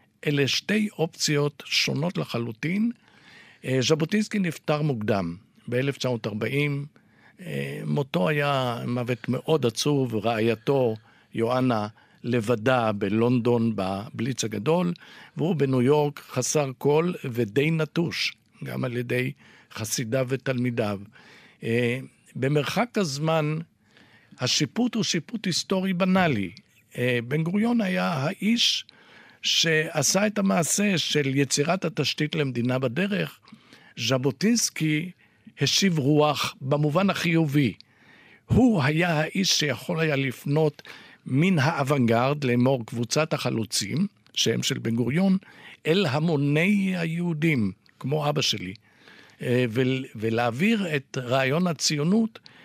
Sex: male